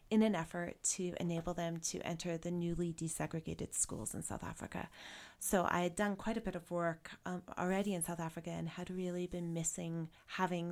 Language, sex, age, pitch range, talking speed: English, female, 30-49, 170-195 Hz, 195 wpm